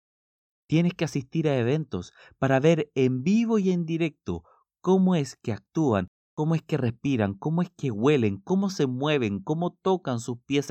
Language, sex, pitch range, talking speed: Spanish, male, 95-135 Hz, 175 wpm